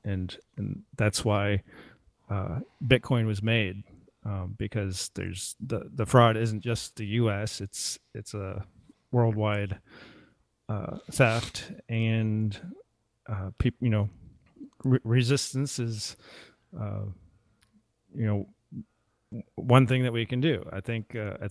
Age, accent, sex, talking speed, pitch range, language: 30-49, American, male, 130 wpm, 100-125 Hz, English